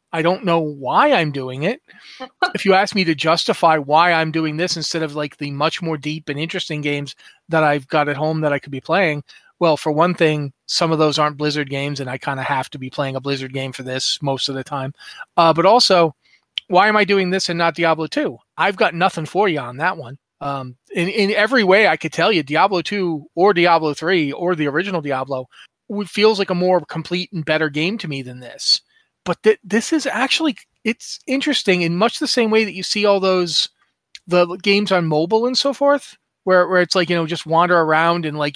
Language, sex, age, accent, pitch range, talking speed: English, male, 30-49, American, 150-190 Hz, 230 wpm